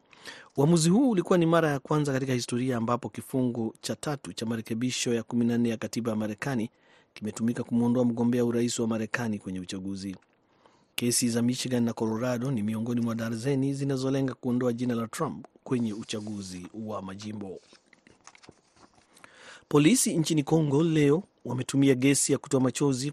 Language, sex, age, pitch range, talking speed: Swahili, male, 40-59, 115-140 Hz, 145 wpm